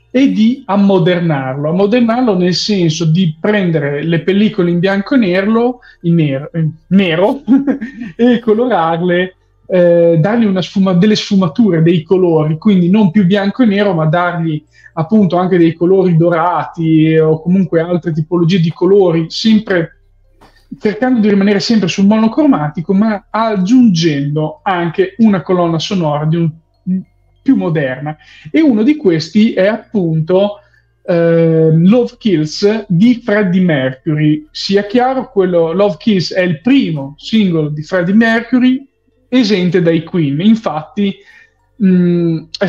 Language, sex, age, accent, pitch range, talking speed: Italian, male, 30-49, native, 165-210 Hz, 130 wpm